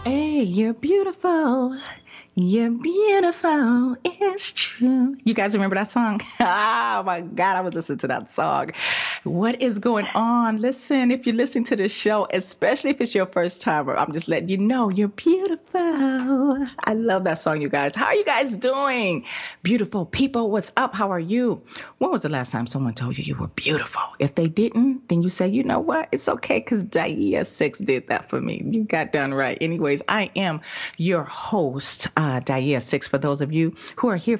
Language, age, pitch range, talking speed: English, 30-49, 160-260 Hz, 195 wpm